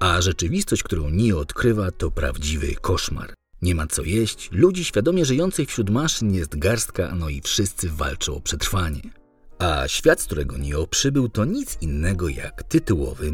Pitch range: 80-115 Hz